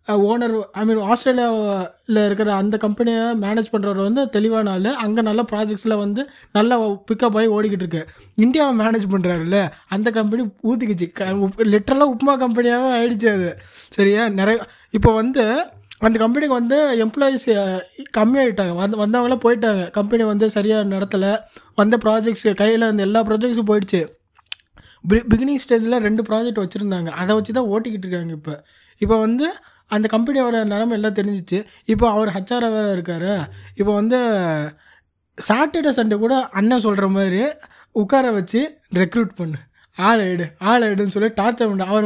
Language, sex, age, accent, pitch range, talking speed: Tamil, male, 20-39, native, 200-235 Hz, 140 wpm